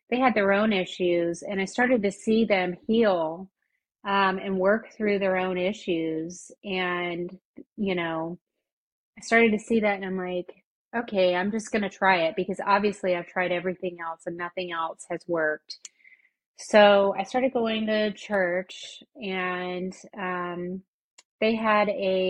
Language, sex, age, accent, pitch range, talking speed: English, female, 30-49, American, 180-215 Hz, 160 wpm